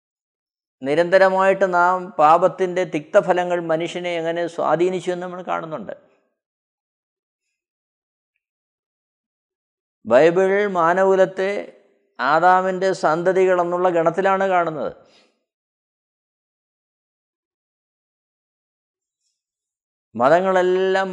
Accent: native